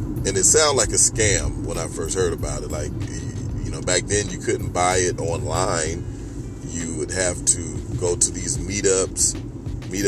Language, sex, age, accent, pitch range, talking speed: English, male, 30-49, American, 95-120 Hz, 185 wpm